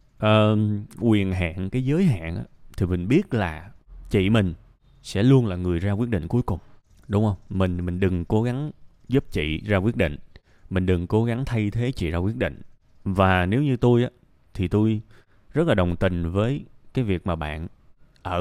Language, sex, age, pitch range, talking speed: Vietnamese, male, 20-39, 90-115 Hz, 195 wpm